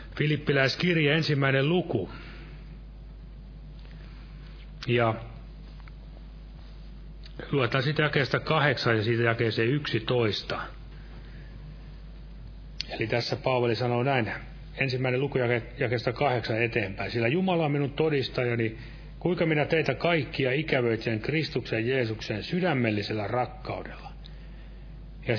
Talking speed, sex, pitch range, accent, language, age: 85 wpm, male, 120-155 Hz, native, Finnish, 40-59